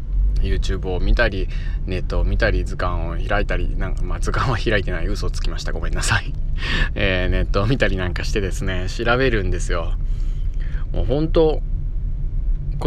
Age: 20-39